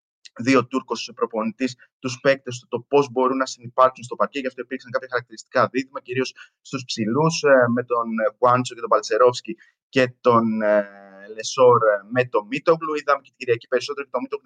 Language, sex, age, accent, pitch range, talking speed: Greek, male, 30-49, native, 115-145 Hz, 180 wpm